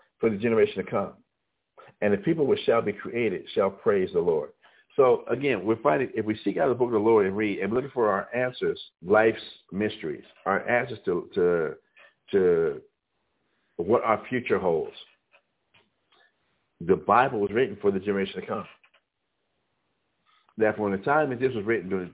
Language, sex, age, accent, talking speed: English, male, 60-79, American, 175 wpm